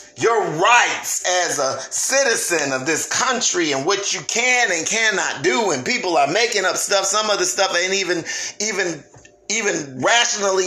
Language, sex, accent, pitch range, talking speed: English, male, American, 150-205 Hz, 170 wpm